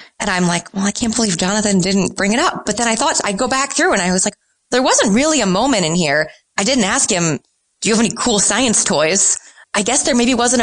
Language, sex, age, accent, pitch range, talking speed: English, female, 20-39, American, 165-215 Hz, 265 wpm